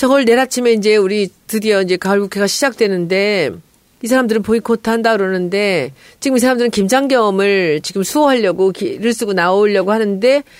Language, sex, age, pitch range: Korean, female, 40-59, 205-315 Hz